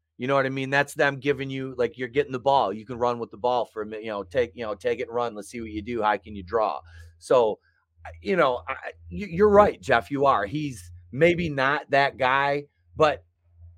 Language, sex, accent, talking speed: English, male, American, 245 wpm